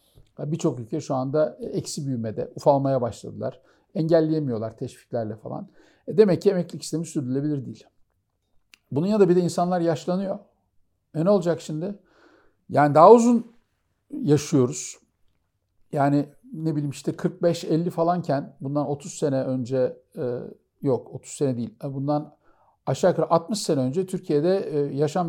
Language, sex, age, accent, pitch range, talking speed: Turkish, male, 50-69, native, 140-185 Hz, 130 wpm